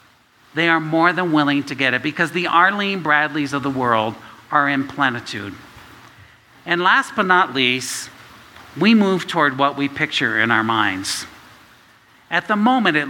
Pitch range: 120-160 Hz